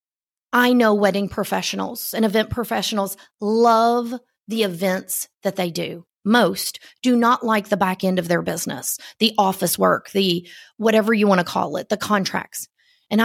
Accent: American